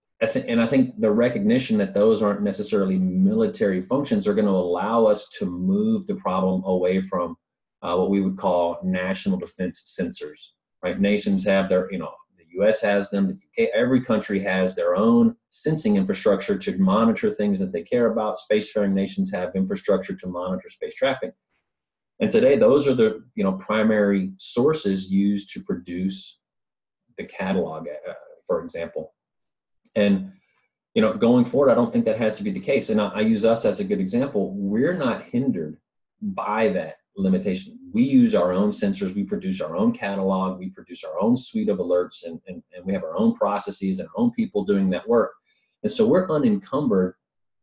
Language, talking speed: English, 185 wpm